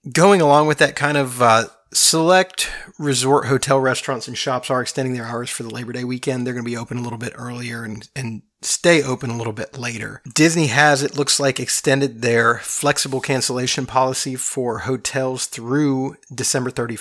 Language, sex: English, male